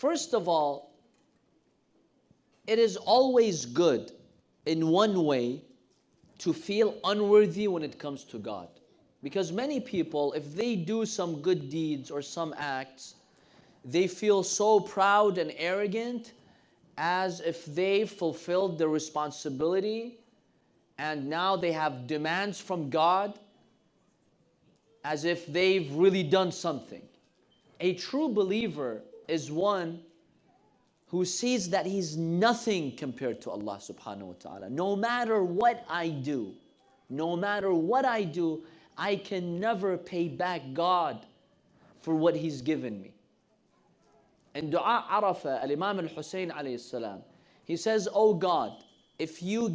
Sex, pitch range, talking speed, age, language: male, 160-205 Hz, 125 wpm, 30-49, English